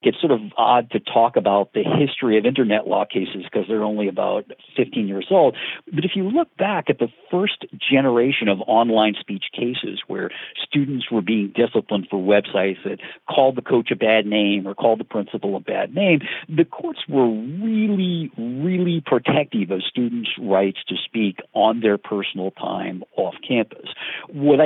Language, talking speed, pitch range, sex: English, 175 wpm, 105-150 Hz, male